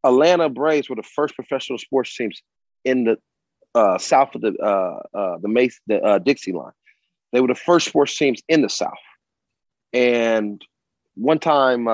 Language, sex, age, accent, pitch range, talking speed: English, male, 30-49, American, 110-130 Hz, 170 wpm